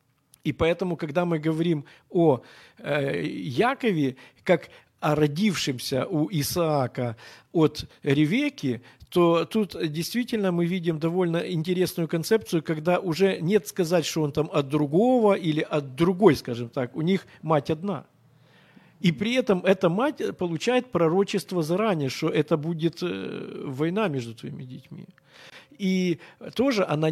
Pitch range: 150-195 Hz